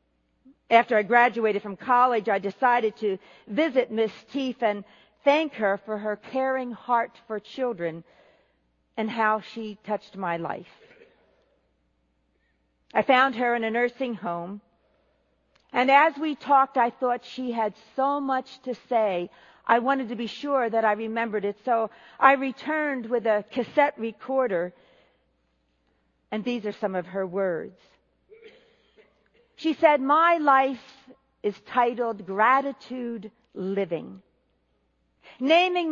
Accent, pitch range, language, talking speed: American, 210-270 Hz, English, 130 wpm